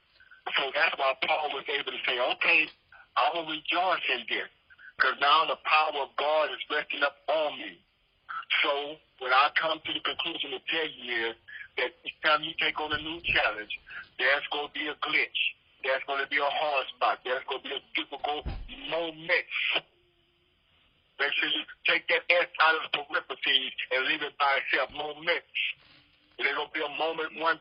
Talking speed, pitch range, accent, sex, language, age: 185 wpm, 145-165 Hz, American, male, English, 60-79